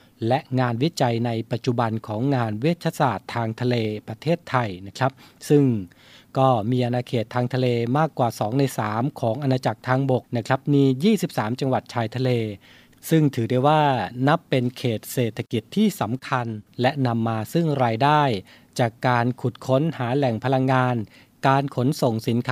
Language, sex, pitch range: Thai, male, 120-145 Hz